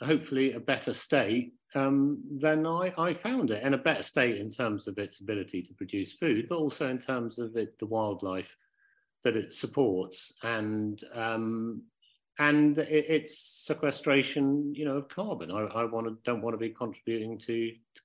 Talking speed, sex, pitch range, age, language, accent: 175 wpm, male, 120-185 Hz, 50-69, English, British